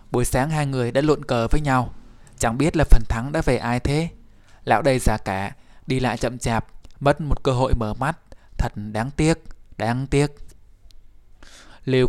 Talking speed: 190 wpm